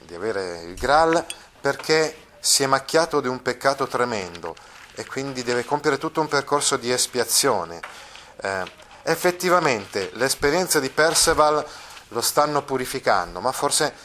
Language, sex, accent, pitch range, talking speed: Italian, male, native, 115-155 Hz, 135 wpm